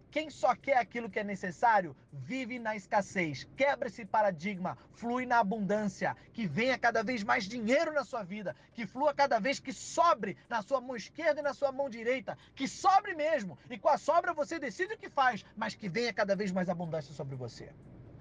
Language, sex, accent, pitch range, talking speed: Portuguese, male, Brazilian, 195-255 Hz, 200 wpm